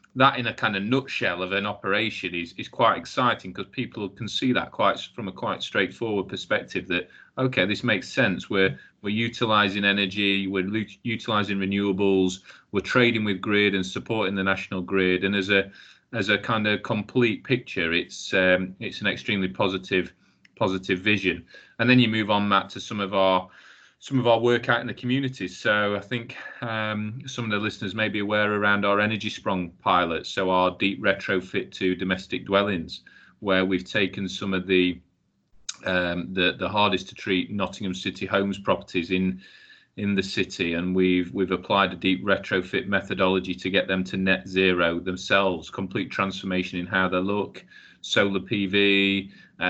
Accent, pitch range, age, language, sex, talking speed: British, 95-105 Hz, 30-49, English, male, 180 wpm